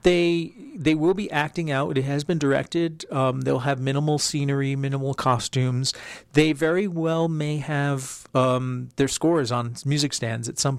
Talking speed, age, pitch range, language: 165 wpm, 40-59, 120-145 Hz, English